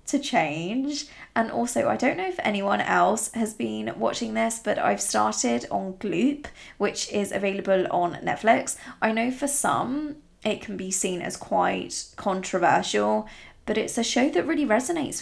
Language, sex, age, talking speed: English, female, 20-39, 160 wpm